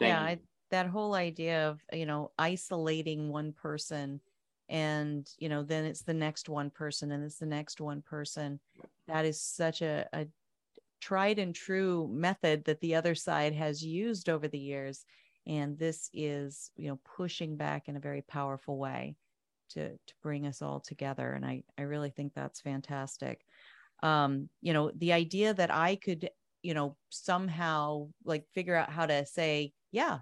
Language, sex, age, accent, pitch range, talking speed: English, female, 30-49, American, 150-185 Hz, 175 wpm